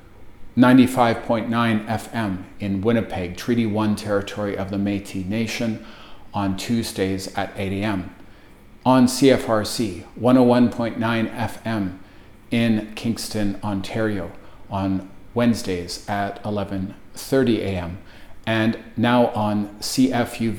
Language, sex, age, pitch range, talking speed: English, male, 40-59, 100-115 Hz, 90 wpm